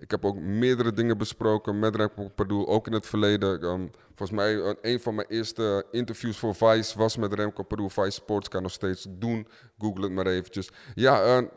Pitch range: 90-110 Hz